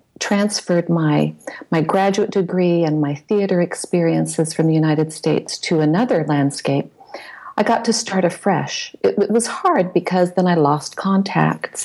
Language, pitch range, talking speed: English, 155-185 Hz, 150 wpm